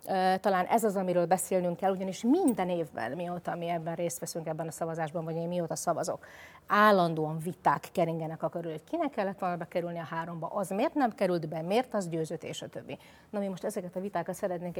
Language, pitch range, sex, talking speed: Hungarian, 170-205 Hz, female, 205 wpm